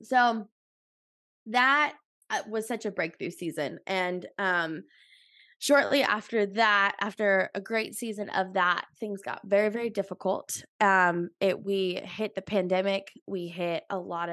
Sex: female